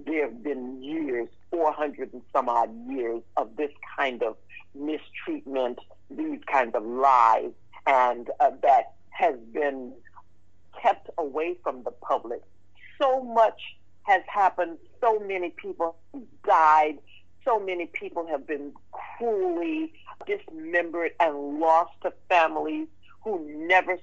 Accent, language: American, English